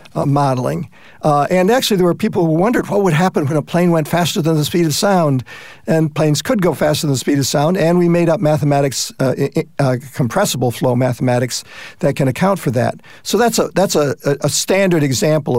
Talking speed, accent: 225 wpm, American